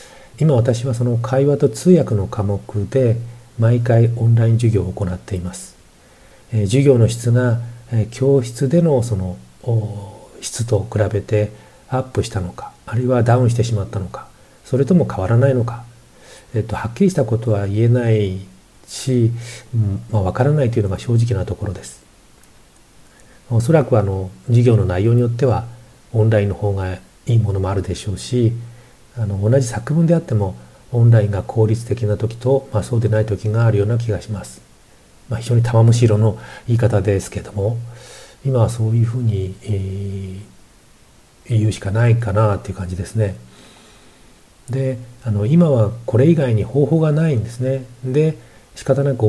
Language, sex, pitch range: Japanese, male, 105-125 Hz